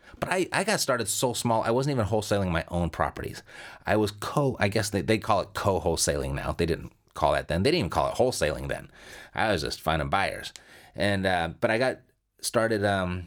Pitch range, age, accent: 95-125 Hz, 30-49, American